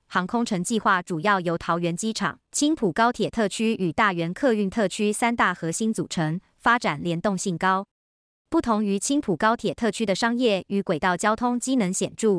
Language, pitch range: Chinese, 180-225 Hz